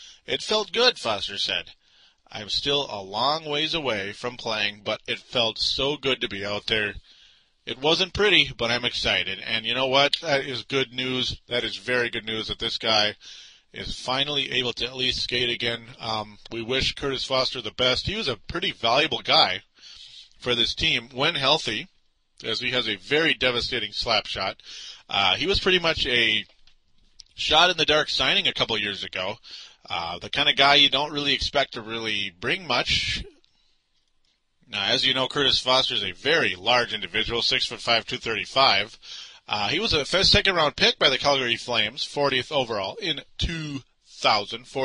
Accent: American